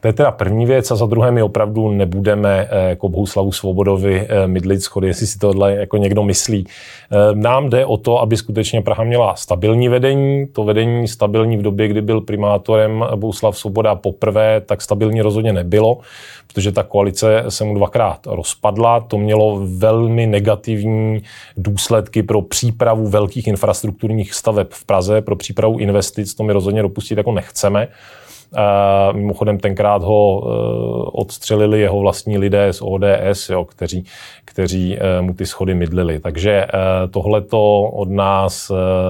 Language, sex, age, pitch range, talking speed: Czech, male, 20-39, 95-110 Hz, 145 wpm